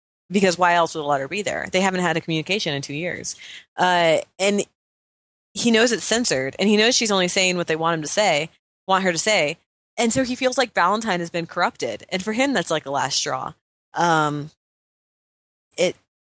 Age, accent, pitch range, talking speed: 20-39, American, 155-200 Hz, 215 wpm